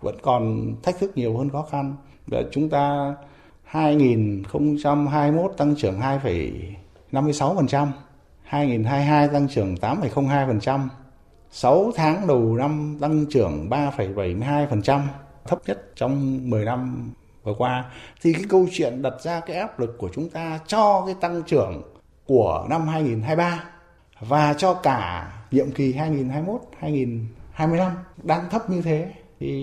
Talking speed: 130 wpm